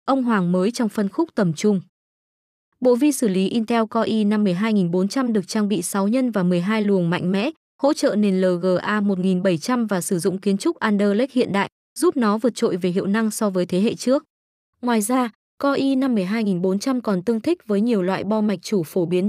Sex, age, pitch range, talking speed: female, 20-39, 195-245 Hz, 210 wpm